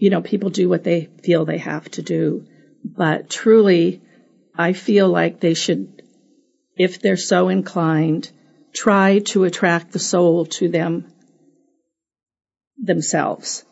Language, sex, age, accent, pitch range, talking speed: English, female, 50-69, American, 170-210 Hz, 130 wpm